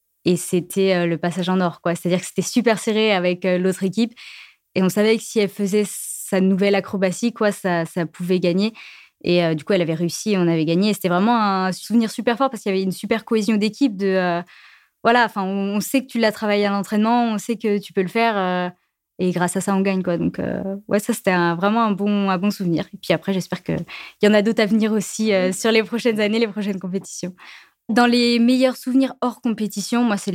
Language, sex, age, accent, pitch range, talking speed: French, female, 20-39, French, 180-215 Hz, 245 wpm